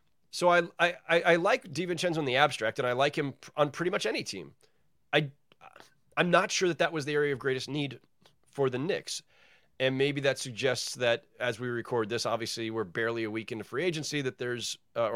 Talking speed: 210 wpm